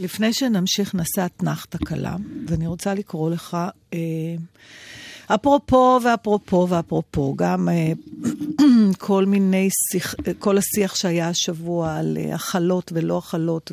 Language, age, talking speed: Hebrew, 50-69, 105 wpm